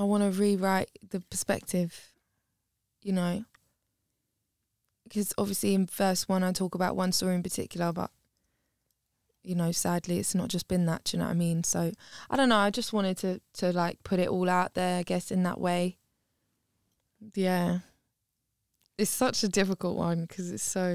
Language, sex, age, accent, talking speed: English, female, 10-29, British, 185 wpm